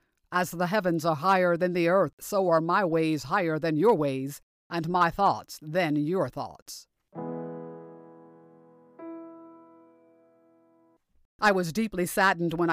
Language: English